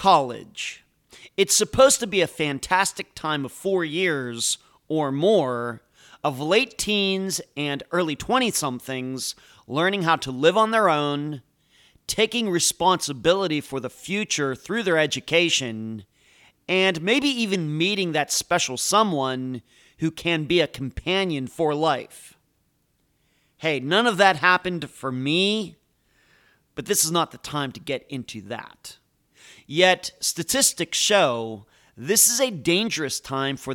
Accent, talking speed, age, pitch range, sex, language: American, 130 wpm, 40-59, 135-185 Hz, male, English